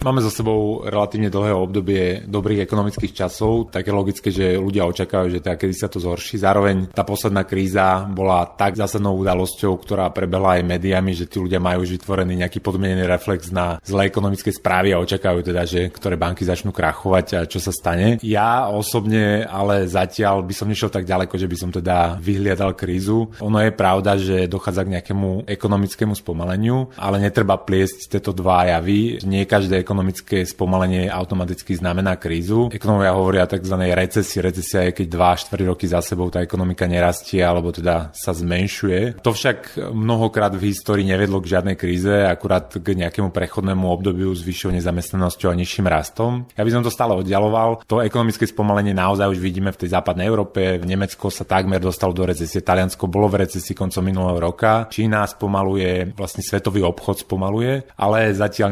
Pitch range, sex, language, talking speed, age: 90-105 Hz, male, Slovak, 175 wpm, 30-49